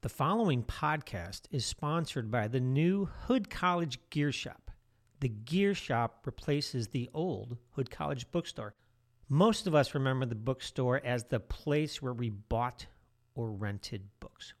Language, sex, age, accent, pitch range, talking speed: English, male, 50-69, American, 115-155 Hz, 150 wpm